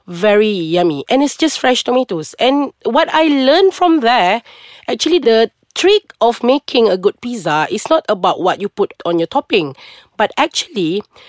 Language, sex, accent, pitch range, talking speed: English, female, Malaysian, 185-280 Hz, 170 wpm